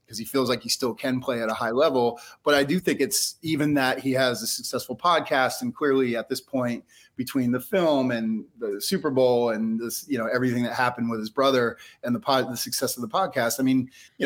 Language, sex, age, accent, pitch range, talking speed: English, male, 30-49, American, 120-135 Hz, 240 wpm